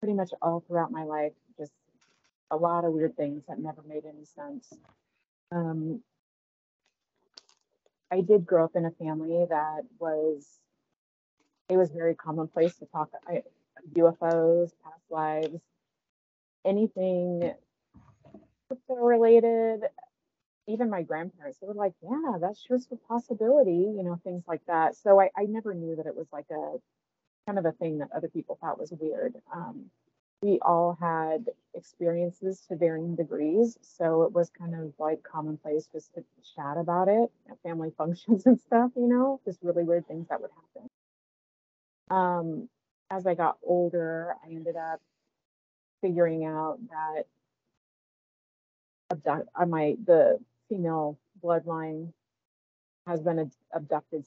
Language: English